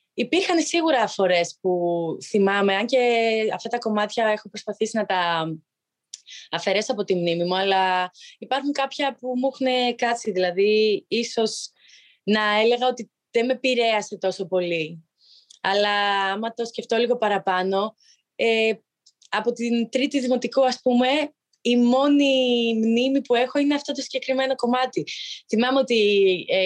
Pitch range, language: 180-245 Hz, Greek